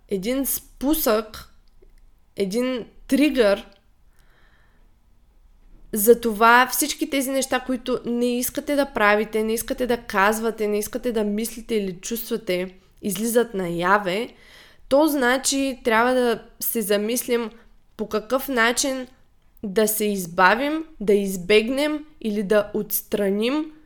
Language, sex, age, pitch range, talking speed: Bulgarian, female, 20-39, 200-245 Hz, 110 wpm